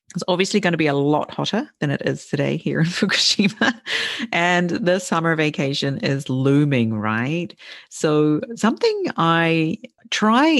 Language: English